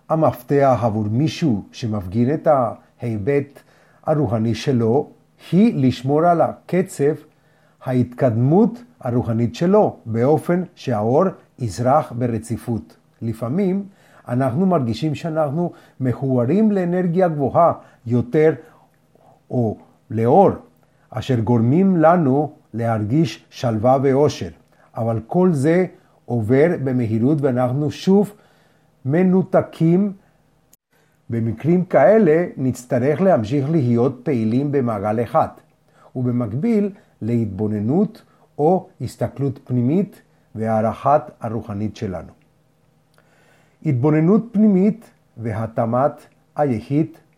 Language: Hebrew